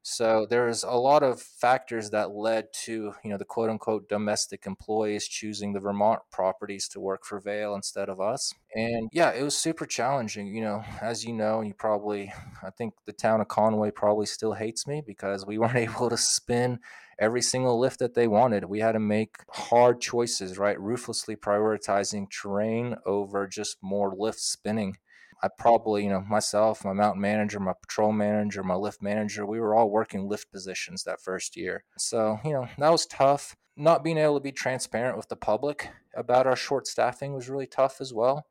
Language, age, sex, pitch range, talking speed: English, 20-39, male, 100-115 Hz, 195 wpm